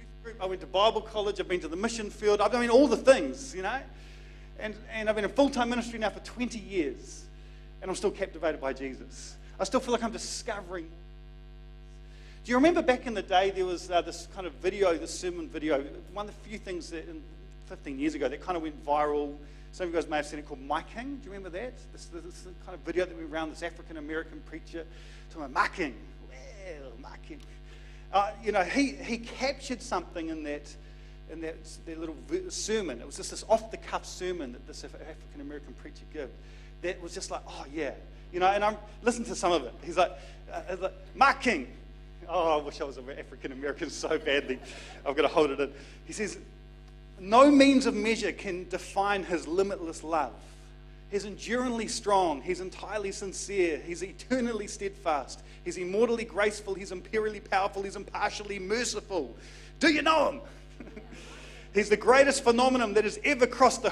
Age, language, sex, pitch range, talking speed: 40-59, English, male, 165-225 Hz, 200 wpm